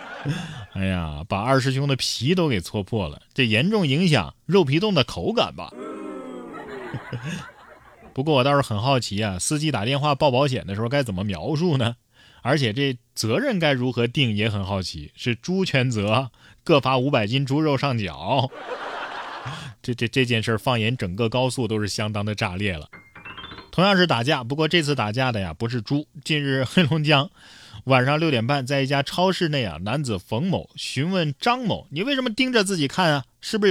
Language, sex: Chinese, male